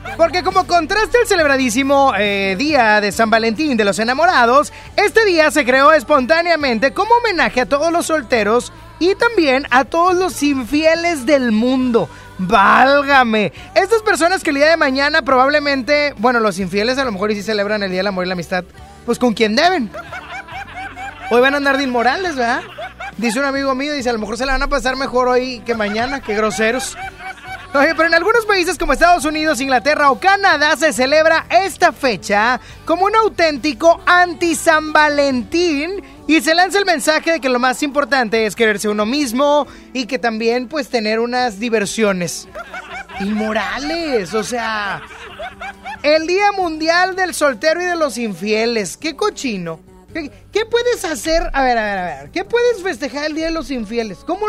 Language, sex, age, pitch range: Spanish, male, 20-39, 240-340 Hz